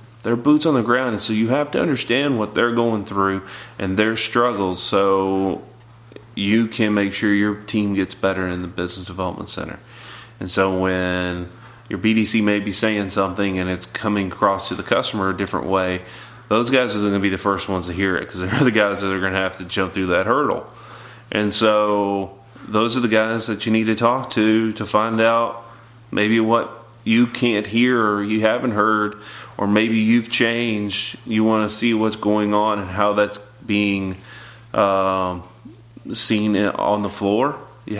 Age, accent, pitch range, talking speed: 30-49, American, 100-115 Hz, 195 wpm